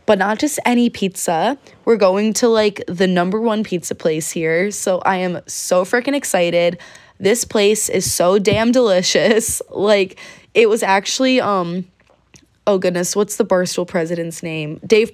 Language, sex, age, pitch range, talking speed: English, female, 20-39, 180-235 Hz, 160 wpm